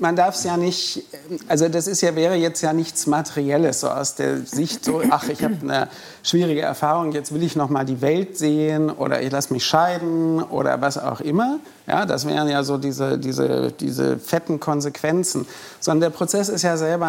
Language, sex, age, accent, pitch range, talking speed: German, male, 50-69, German, 150-180 Hz, 190 wpm